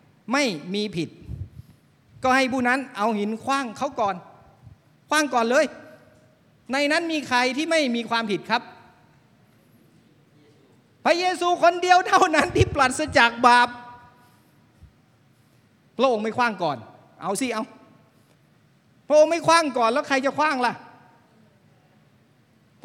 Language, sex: Thai, male